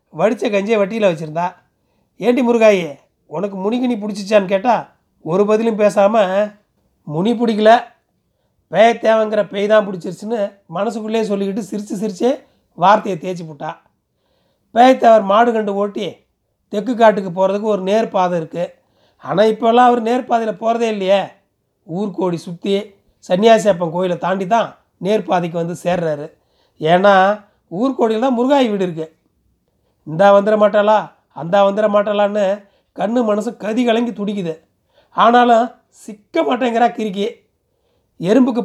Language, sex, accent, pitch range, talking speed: Tamil, male, native, 190-230 Hz, 115 wpm